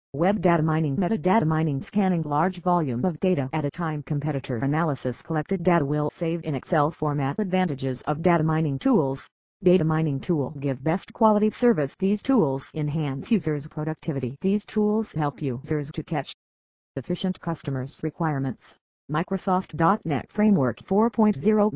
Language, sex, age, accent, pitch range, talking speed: English, female, 50-69, American, 145-190 Hz, 140 wpm